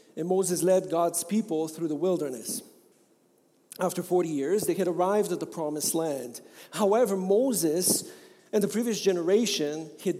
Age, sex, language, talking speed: 40-59, male, English, 145 wpm